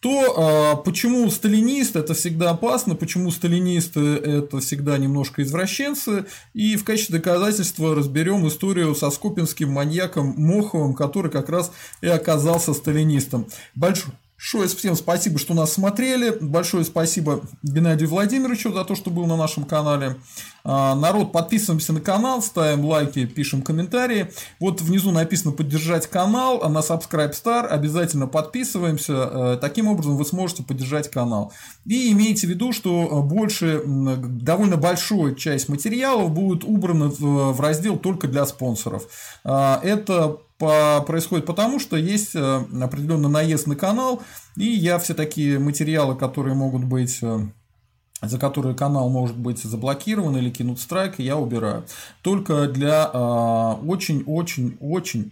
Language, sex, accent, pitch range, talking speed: Russian, male, native, 140-190 Hz, 130 wpm